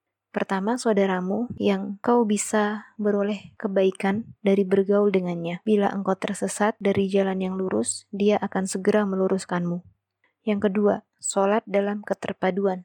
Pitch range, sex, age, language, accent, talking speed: 195-215 Hz, female, 20-39, Indonesian, native, 120 wpm